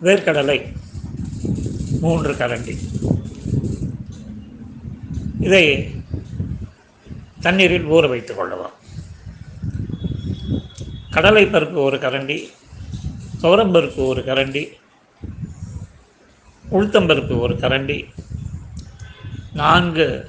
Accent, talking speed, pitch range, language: native, 55 wpm, 125-165 Hz, Tamil